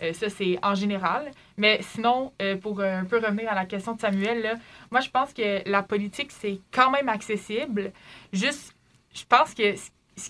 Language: French